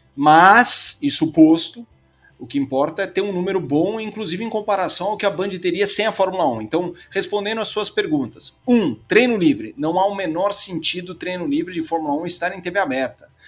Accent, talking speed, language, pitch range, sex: Brazilian, 200 wpm, Portuguese, 145-225 Hz, male